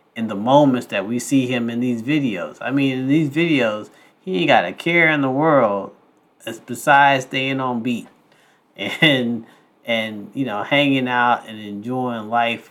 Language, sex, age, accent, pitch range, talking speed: English, male, 30-49, American, 115-145 Hz, 170 wpm